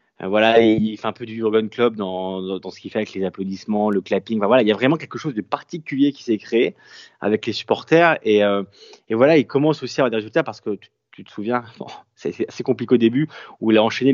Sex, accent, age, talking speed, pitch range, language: male, French, 20-39, 270 wpm, 100-135 Hz, French